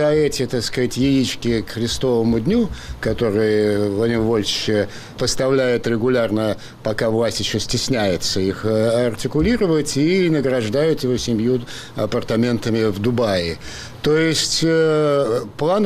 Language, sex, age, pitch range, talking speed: Russian, male, 50-69, 115-145 Hz, 115 wpm